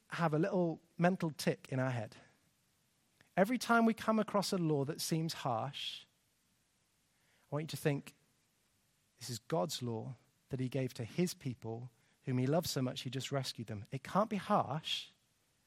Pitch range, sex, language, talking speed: 140-215 Hz, male, English, 175 wpm